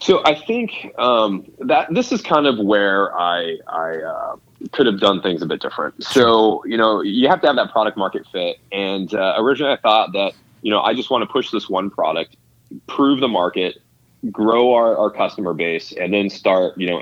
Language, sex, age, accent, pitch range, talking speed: English, male, 20-39, American, 85-105 Hz, 210 wpm